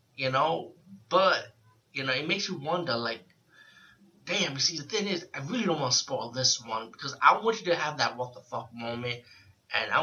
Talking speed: 220 wpm